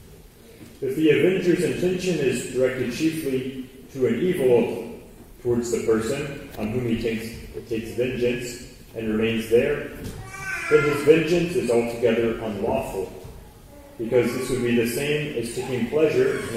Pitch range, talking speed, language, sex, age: 115-150 Hz, 140 wpm, English, male, 30-49